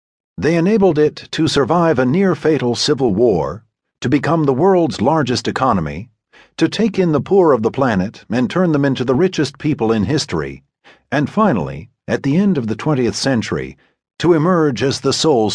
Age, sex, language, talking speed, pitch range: 50-69, male, English, 180 wpm, 110-170 Hz